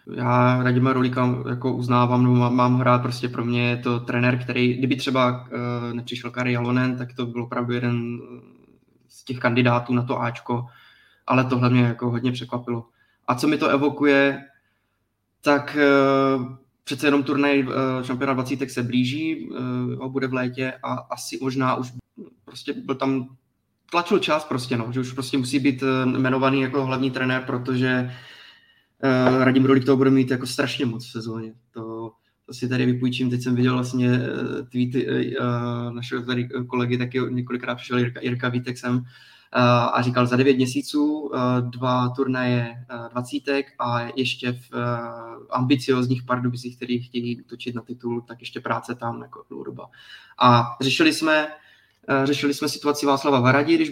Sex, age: male, 20-39